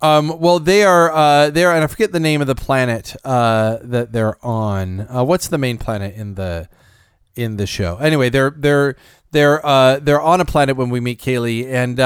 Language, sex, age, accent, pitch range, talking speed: English, male, 30-49, American, 125-165 Hz, 210 wpm